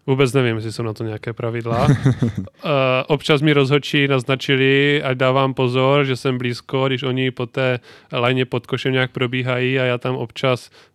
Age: 20-39